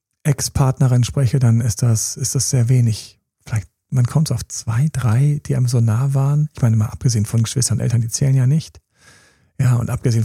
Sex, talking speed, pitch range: male, 205 wpm, 120-165 Hz